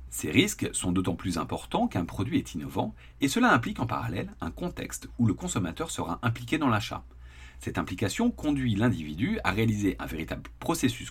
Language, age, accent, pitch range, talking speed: French, 40-59, French, 85-130 Hz, 180 wpm